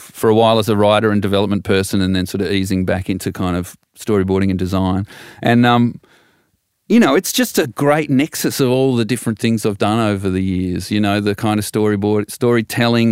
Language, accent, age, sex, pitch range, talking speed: English, Australian, 40-59, male, 95-115 Hz, 215 wpm